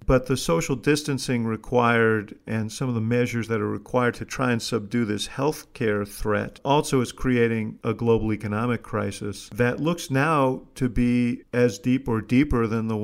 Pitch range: 110-130 Hz